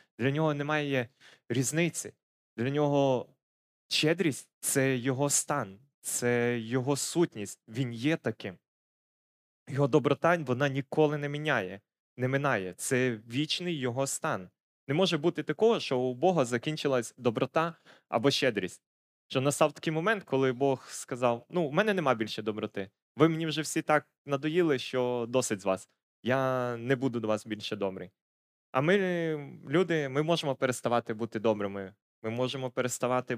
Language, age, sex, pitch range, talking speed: Ukrainian, 20-39, male, 115-150 Hz, 145 wpm